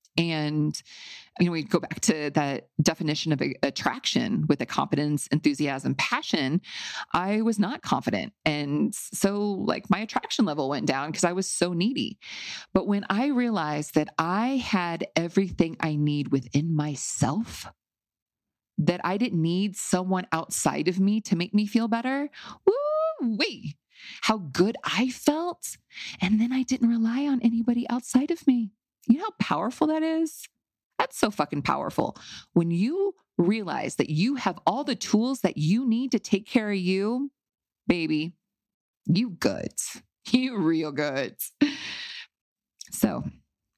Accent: American